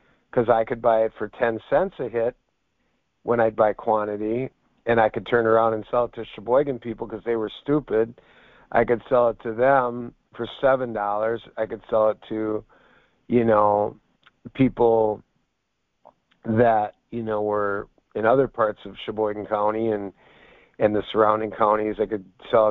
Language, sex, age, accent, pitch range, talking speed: English, male, 50-69, American, 105-120 Hz, 165 wpm